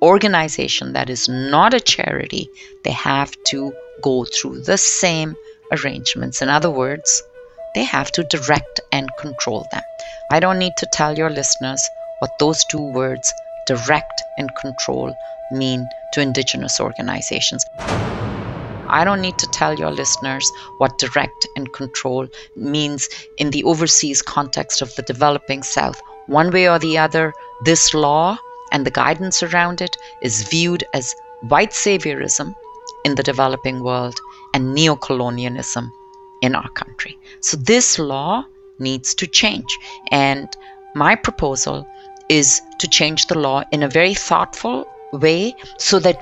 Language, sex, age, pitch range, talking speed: English, female, 30-49, 135-195 Hz, 140 wpm